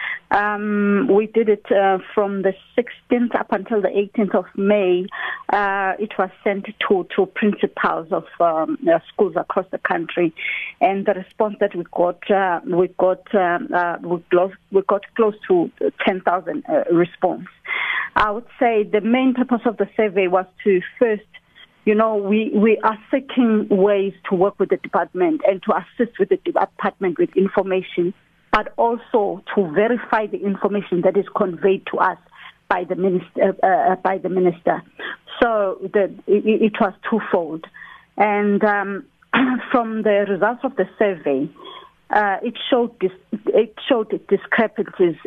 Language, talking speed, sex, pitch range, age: English, 155 wpm, female, 185-220 Hz, 40-59